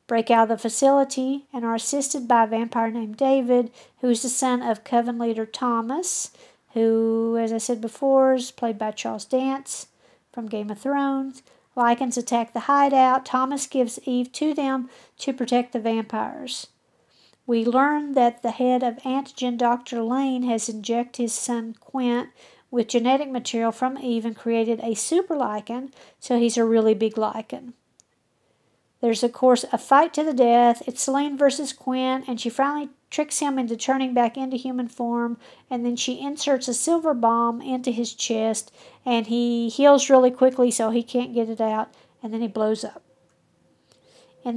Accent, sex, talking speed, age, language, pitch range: American, female, 170 wpm, 50-69, English, 230-265 Hz